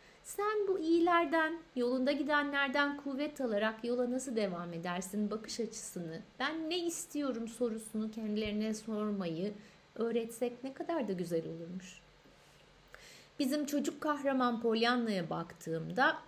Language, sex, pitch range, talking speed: Turkish, female, 195-285 Hz, 110 wpm